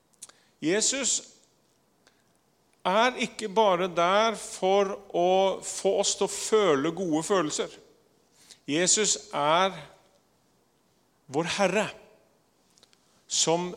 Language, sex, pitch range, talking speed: English, male, 175-215 Hz, 90 wpm